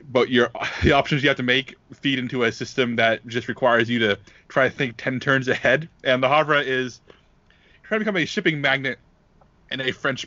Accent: American